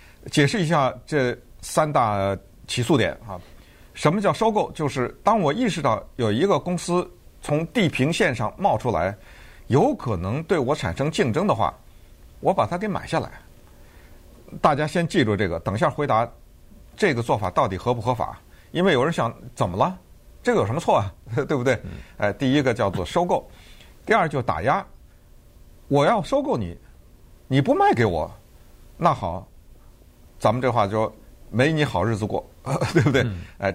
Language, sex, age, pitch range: Chinese, male, 50-69, 100-150 Hz